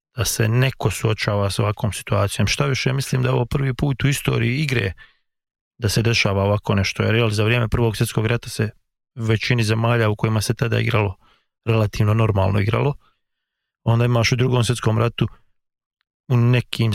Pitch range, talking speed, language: 105-125 Hz, 170 wpm, English